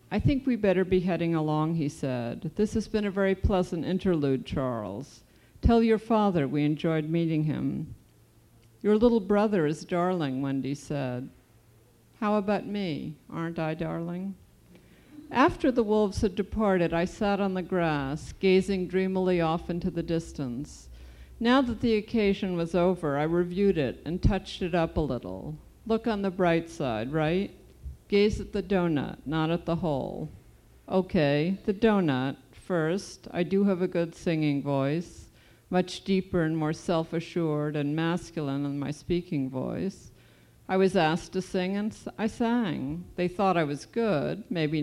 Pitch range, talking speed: 150-195 Hz, 160 wpm